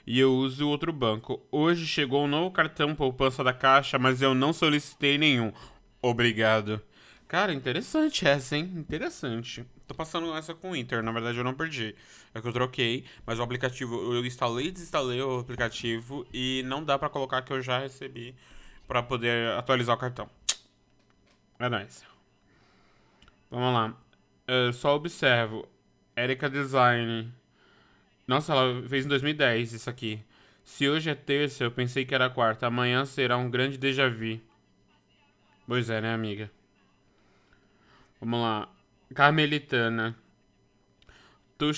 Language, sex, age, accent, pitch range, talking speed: Portuguese, male, 20-39, Brazilian, 115-135 Hz, 150 wpm